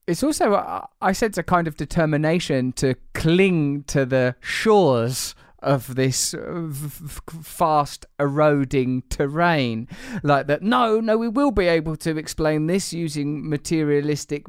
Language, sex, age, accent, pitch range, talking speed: English, male, 20-39, British, 145-175 Hz, 130 wpm